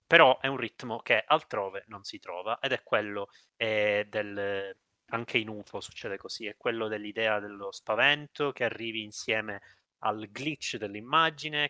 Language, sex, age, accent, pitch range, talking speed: Italian, male, 30-49, native, 100-120 Hz, 155 wpm